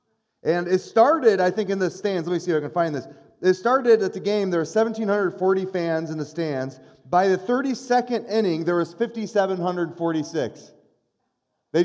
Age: 30-49